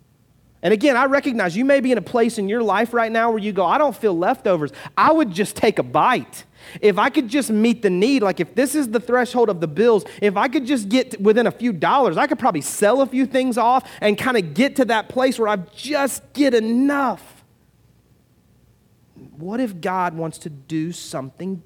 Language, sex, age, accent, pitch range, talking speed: English, male, 30-49, American, 160-225 Hz, 220 wpm